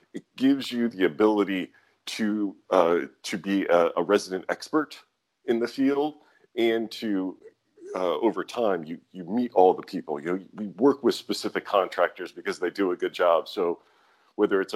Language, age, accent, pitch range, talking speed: English, 40-59, American, 95-120 Hz, 175 wpm